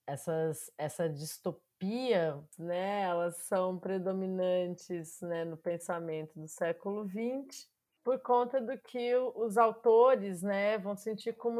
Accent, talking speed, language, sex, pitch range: Brazilian, 120 wpm, Portuguese, female, 175-235 Hz